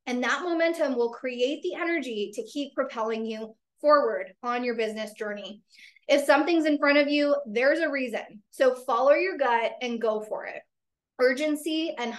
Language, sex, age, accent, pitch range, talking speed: English, female, 20-39, American, 235-305 Hz, 170 wpm